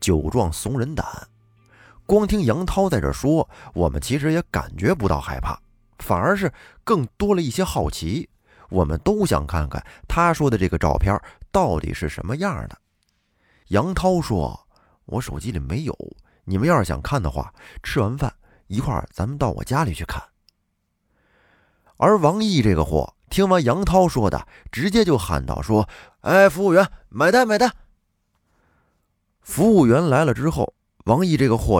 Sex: male